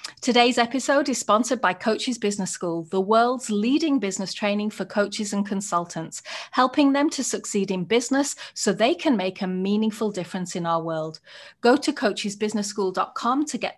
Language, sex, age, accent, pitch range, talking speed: English, female, 30-49, British, 195-260 Hz, 165 wpm